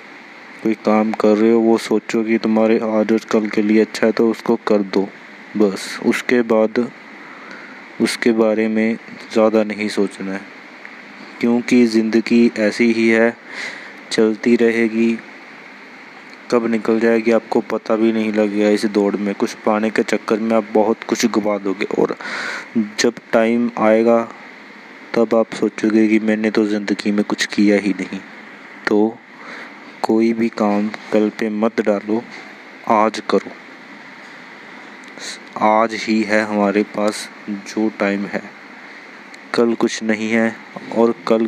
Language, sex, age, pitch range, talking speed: Hindi, male, 20-39, 105-115 Hz, 145 wpm